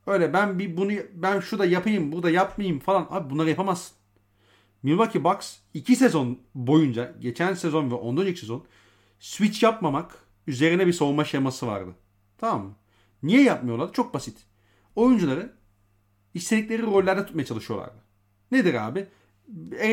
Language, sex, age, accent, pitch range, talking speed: Turkish, male, 40-59, native, 115-185 Hz, 140 wpm